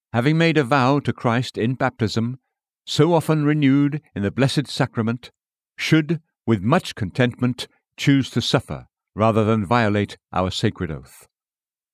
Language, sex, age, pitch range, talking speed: English, male, 60-79, 110-145 Hz, 140 wpm